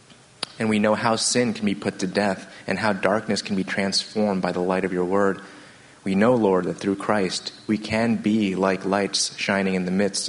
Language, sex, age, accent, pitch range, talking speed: English, male, 30-49, American, 90-100 Hz, 215 wpm